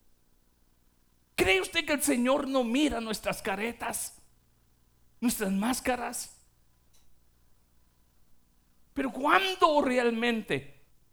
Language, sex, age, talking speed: Spanish, male, 50-69, 75 wpm